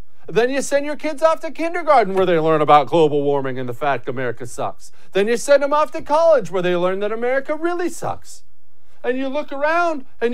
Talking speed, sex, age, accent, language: 220 wpm, male, 50-69, American, English